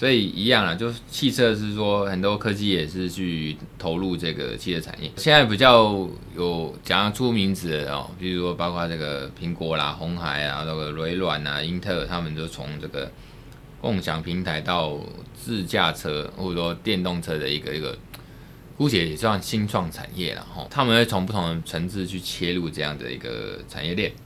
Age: 20-39